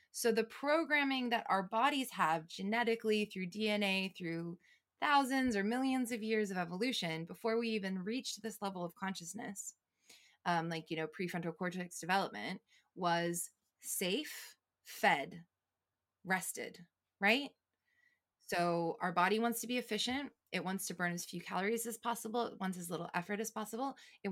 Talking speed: 155 wpm